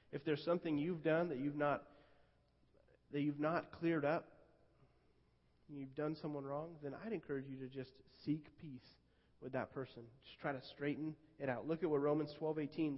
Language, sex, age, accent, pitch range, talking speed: English, male, 30-49, American, 130-165 Hz, 190 wpm